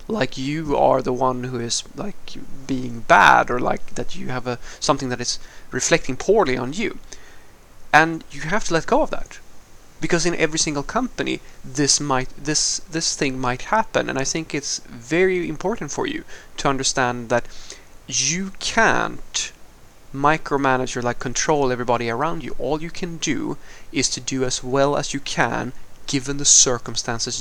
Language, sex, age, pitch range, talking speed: English, male, 30-49, 125-155 Hz, 170 wpm